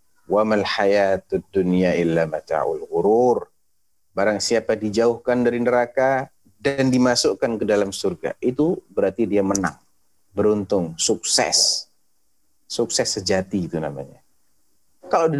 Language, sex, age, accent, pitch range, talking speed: Indonesian, male, 40-59, native, 100-130 Hz, 85 wpm